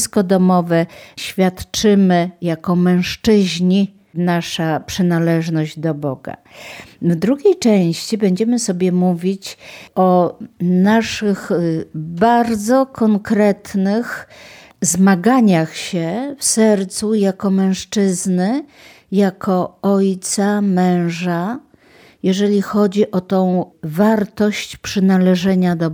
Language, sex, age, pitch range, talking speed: Polish, female, 50-69, 175-215 Hz, 80 wpm